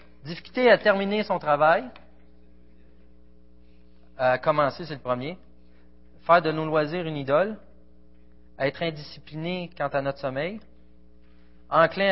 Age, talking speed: 40-59, 120 wpm